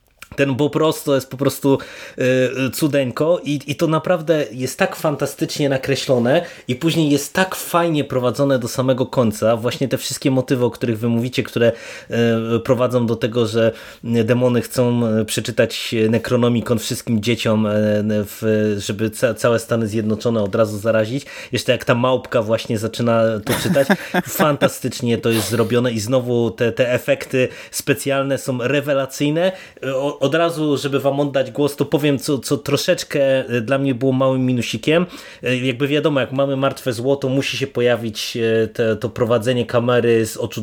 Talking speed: 160 wpm